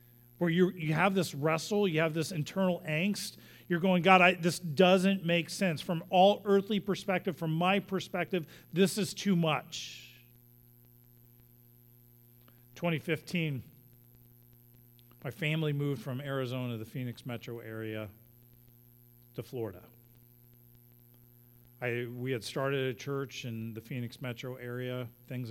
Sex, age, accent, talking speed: male, 40-59, American, 125 wpm